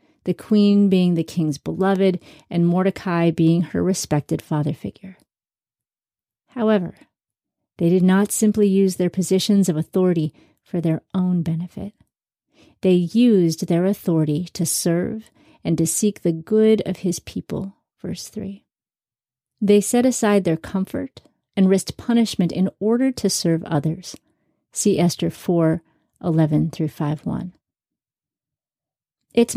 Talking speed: 130 wpm